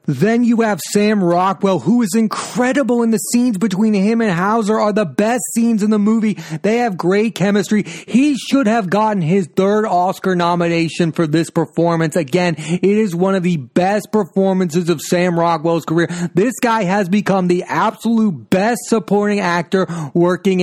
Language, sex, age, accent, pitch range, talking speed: English, male, 30-49, American, 170-215 Hz, 170 wpm